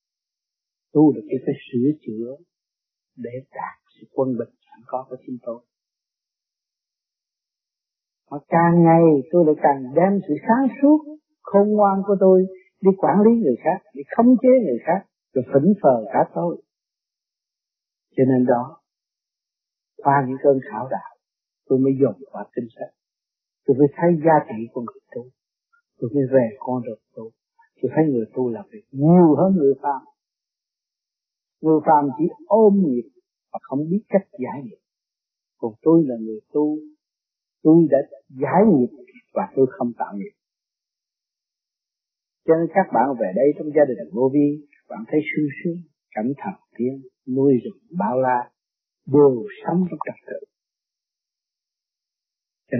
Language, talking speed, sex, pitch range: Vietnamese, 155 wpm, male, 130-185 Hz